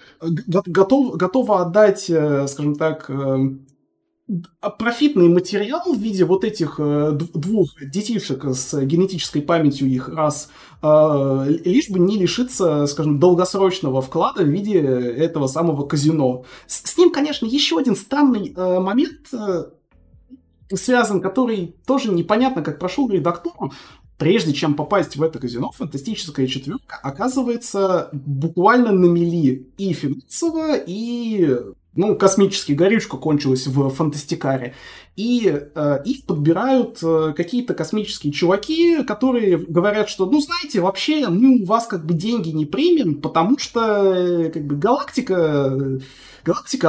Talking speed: 120 wpm